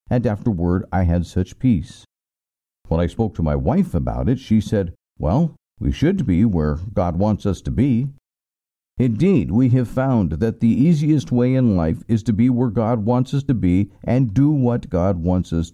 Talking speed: 195 wpm